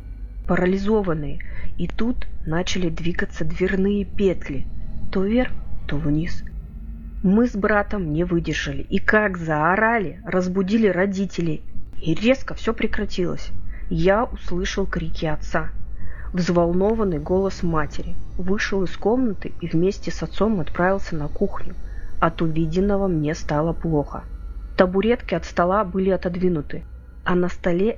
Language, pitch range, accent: Russian, 155-200 Hz, native